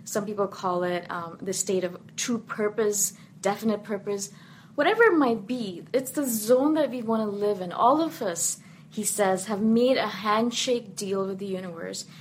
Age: 20-39